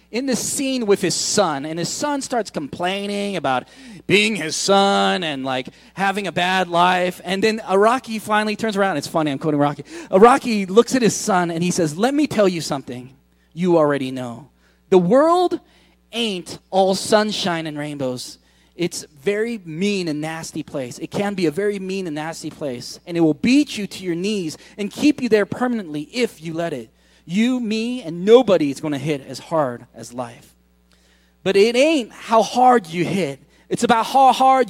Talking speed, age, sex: 190 wpm, 30-49, male